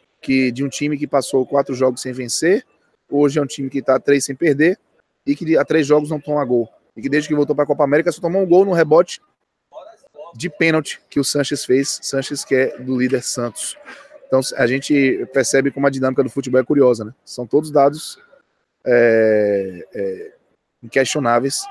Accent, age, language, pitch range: Brazilian, 20-39, Portuguese, 125-150 Hz